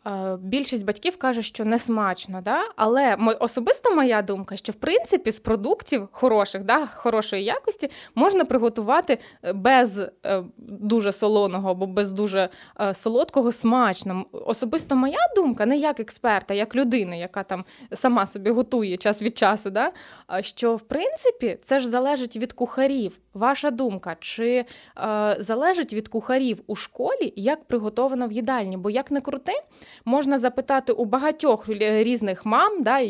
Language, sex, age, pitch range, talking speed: Ukrainian, female, 20-39, 195-250 Hz, 140 wpm